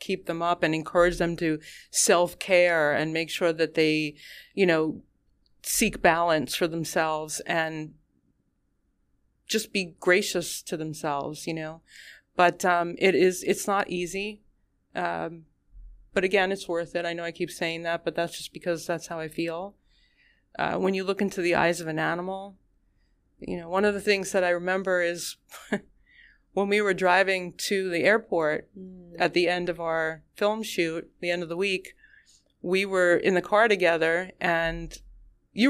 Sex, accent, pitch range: female, American, 165-190 Hz